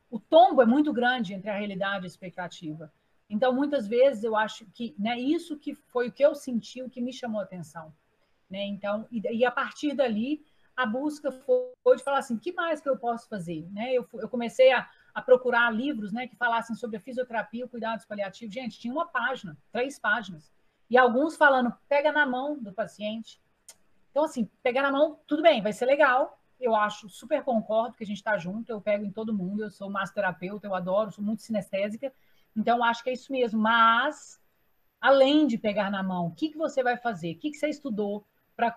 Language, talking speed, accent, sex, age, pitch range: Portuguese, 215 wpm, Brazilian, female, 40-59, 205-260 Hz